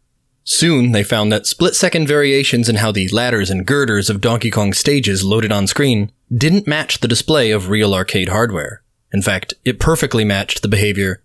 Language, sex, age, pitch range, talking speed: English, male, 20-39, 105-145 Hz, 175 wpm